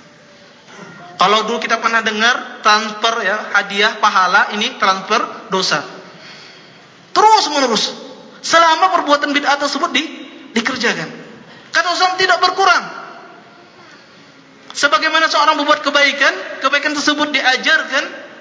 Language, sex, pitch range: Malay, male, 230-305 Hz